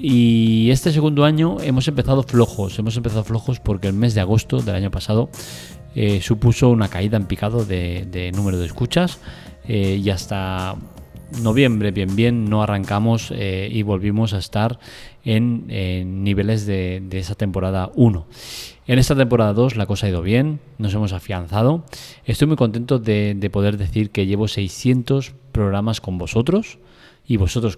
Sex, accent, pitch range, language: male, Spanish, 100-125 Hz, Spanish